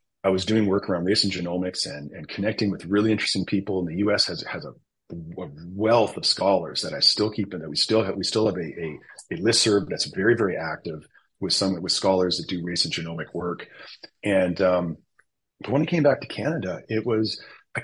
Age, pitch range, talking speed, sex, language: 40-59, 90-105 Hz, 230 wpm, male, English